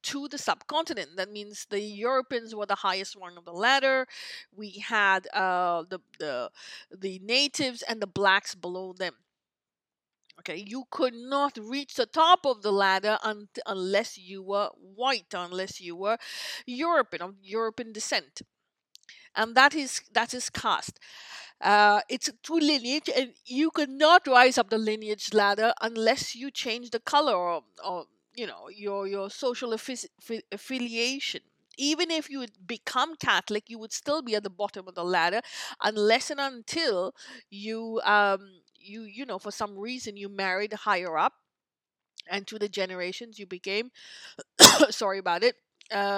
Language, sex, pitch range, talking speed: English, female, 200-265 Hz, 155 wpm